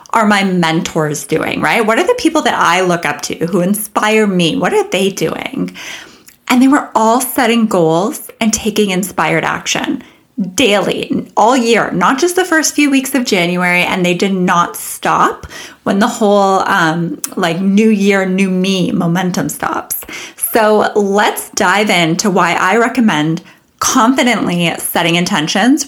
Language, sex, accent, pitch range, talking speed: English, female, American, 175-240 Hz, 160 wpm